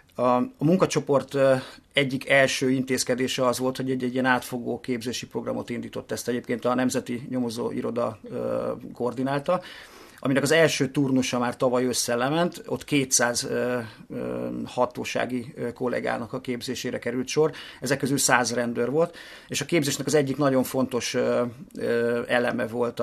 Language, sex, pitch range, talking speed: Hungarian, male, 120-135 Hz, 130 wpm